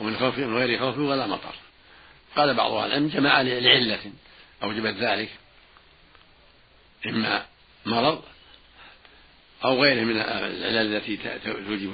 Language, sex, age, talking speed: Arabic, male, 60-79, 105 wpm